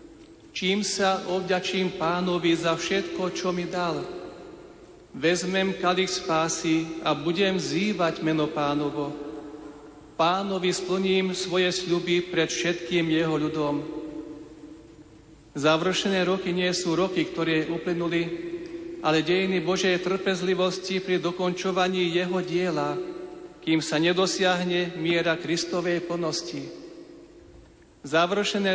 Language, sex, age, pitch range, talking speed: Slovak, male, 50-69, 165-190 Hz, 100 wpm